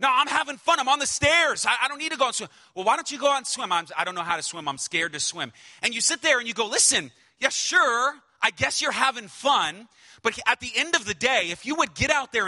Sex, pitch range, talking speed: male, 125-185 Hz, 310 wpm